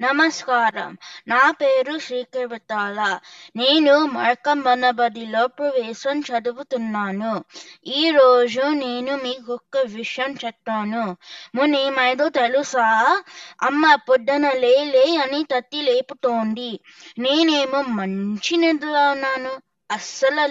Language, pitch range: Telugu, 225-280 Hz